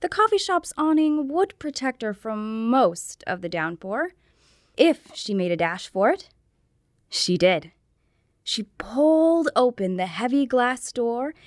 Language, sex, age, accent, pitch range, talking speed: English, female, 20-39, American, 200-305 Hz, 145 wpm